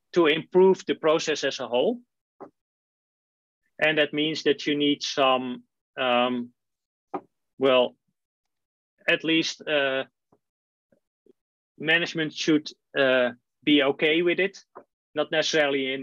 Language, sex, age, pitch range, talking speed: English, male, 30-49, 135-165 Hz, 105 wpm